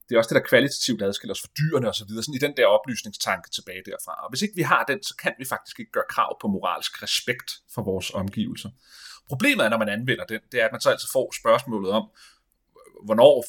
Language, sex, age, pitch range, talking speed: Danish, male, 30-49, 110-160 Hz, 235 wpm